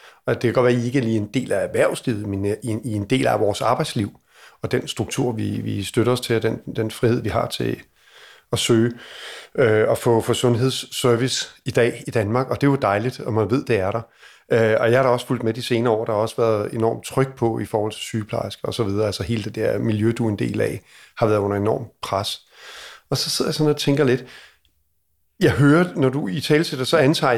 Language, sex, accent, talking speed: Danish, male, native, 230 wpm